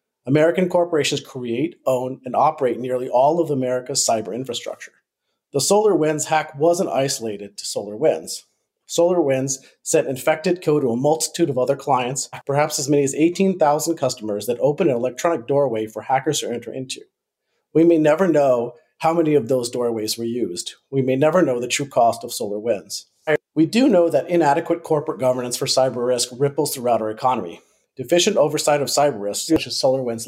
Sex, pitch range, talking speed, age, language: male, 120-155 Hz, 170 wpm, 40-59, English